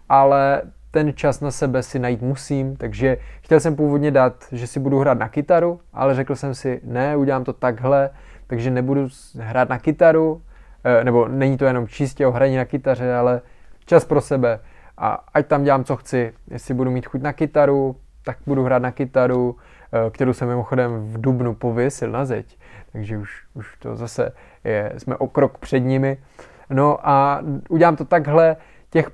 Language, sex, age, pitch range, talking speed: Czech, male, 20-39, 125-145 Hz, 180 wpm